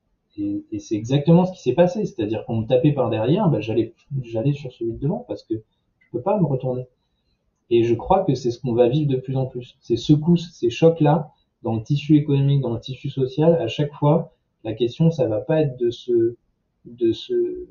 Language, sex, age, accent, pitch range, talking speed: French, male, 20-39, French, 120-160 Hz, 245 wpm